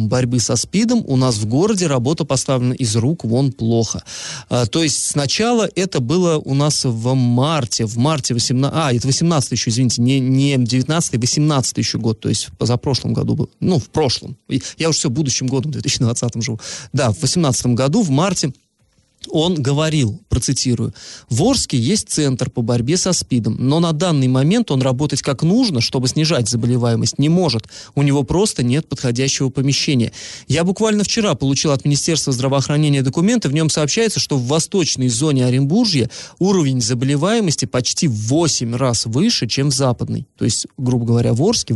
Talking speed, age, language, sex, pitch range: 170 wpm, 20-39, Russian, male, 120-155 Hz